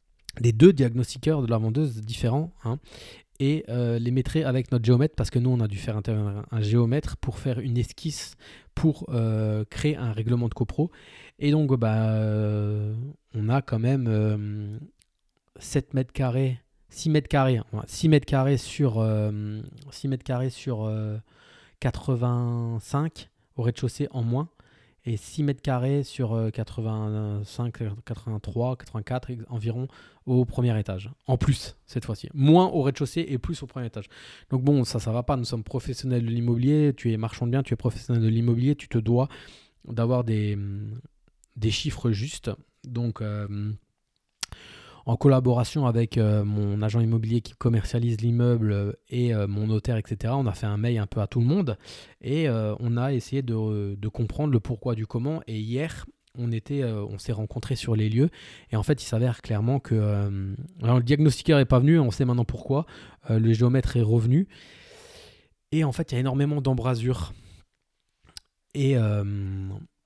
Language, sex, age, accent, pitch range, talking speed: French, male, 20-39, French, 110-135 Hz, 175 wpm